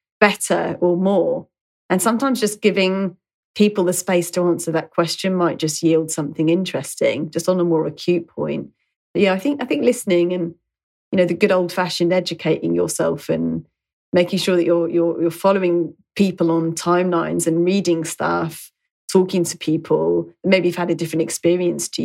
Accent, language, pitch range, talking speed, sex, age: British, English, 170-200 Hz, 170 wpm, female, 30-49